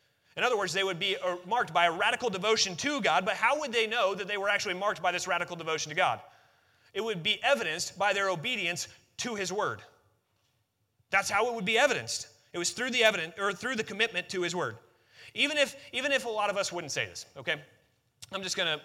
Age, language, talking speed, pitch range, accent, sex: 30-49, English, 230 wpm, 145-215 Hz, American, male